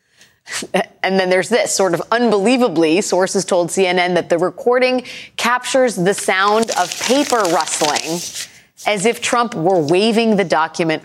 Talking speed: 140 wpm